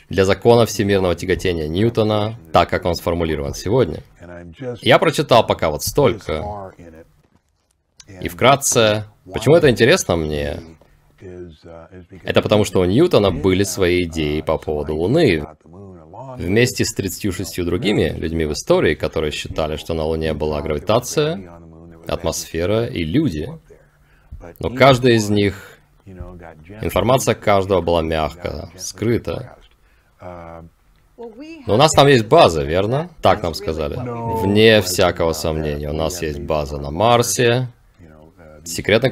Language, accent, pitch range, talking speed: Russian, native, 80-105 Hz, 120 wpm